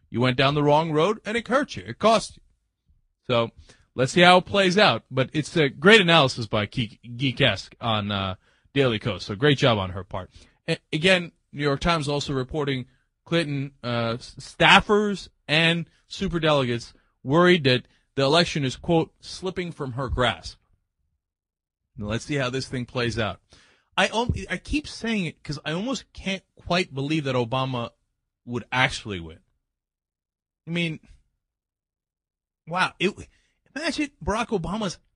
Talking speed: 150 wpm